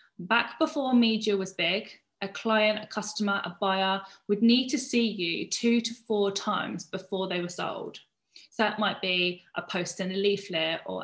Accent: British